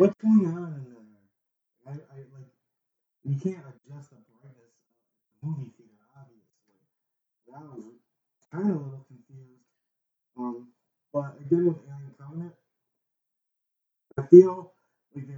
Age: 20-39